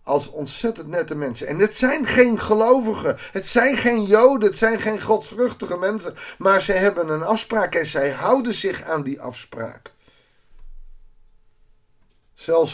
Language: Dutch